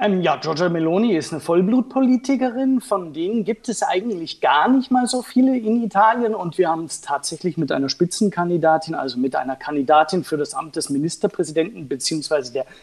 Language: German